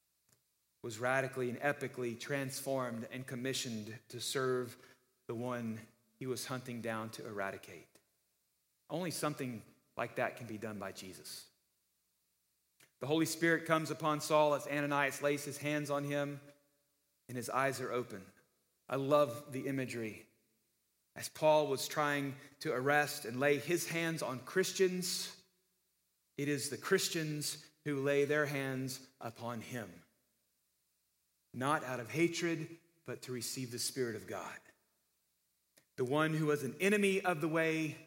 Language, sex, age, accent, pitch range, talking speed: English, male, 40-59, American, 125-155 Hz, 140 wpm